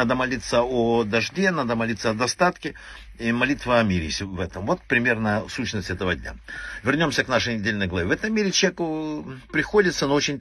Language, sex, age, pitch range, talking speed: Russian, male, 60-79, 110-170 Hz, 180 wpm